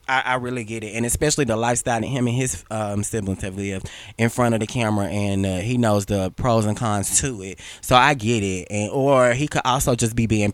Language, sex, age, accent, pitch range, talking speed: English, male, 20-39, American, 100-135 Hz, 250 wpm